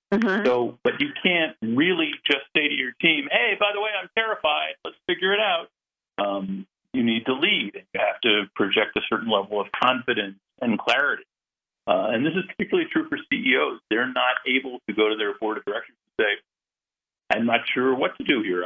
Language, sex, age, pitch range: English, male, 50-69, 100-140 Hz